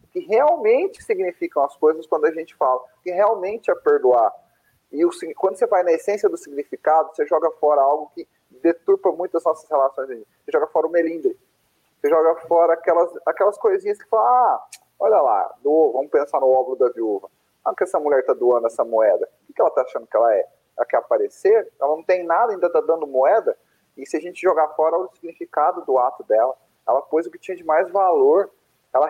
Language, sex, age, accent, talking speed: Portuguese, male, 30-49, Brazilian, 210 wpm